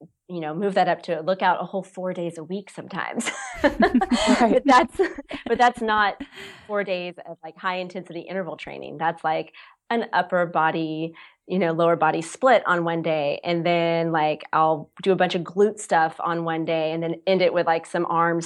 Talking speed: 200 wpm